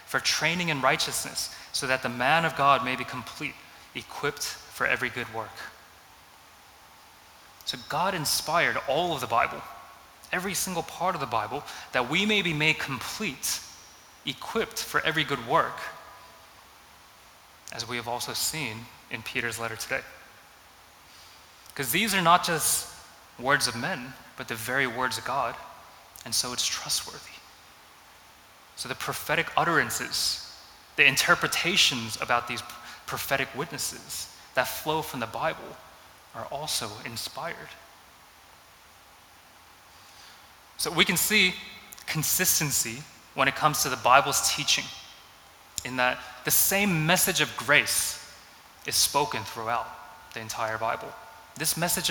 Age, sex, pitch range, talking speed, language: 20-39, male, 110-155 Hz, 130 wpm, English